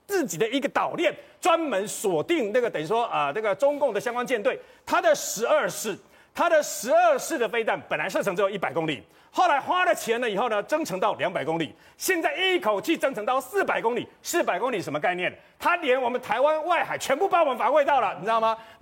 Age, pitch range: 40-59, 245-330 Hz